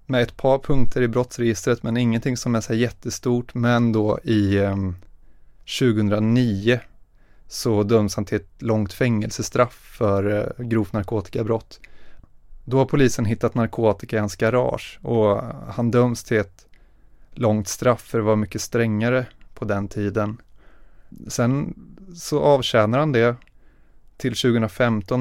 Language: Swedish